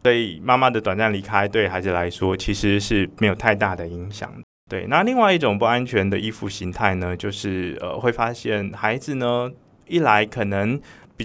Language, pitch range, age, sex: Chinese, 95-120 Hz, 20-39, male